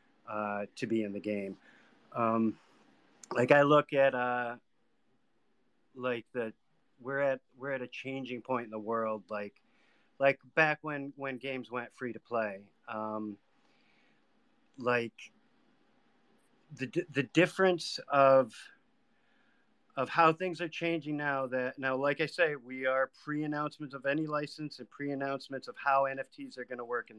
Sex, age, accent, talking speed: male, 40-59, American, 150 wpm